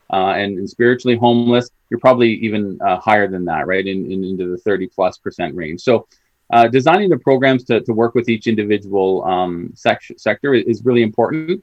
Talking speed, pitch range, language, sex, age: 190 wpm, 95-115 Hz, English, male, 30-49